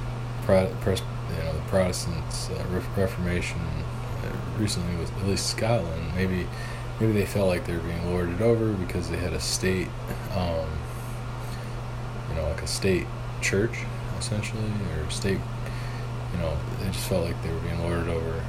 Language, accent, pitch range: English, American, 95-120 Hz